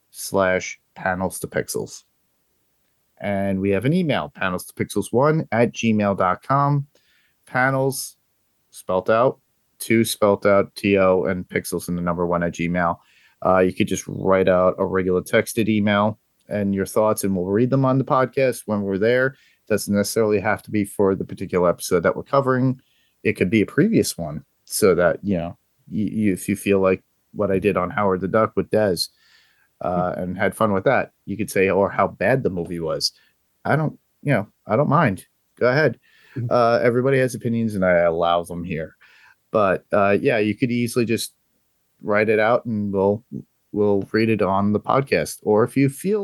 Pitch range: 95-120 Hz